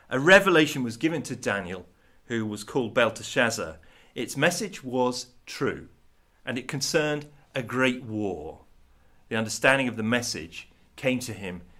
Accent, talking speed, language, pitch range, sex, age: British, 140 wpm, English, 115-155 Hz, male, 40-59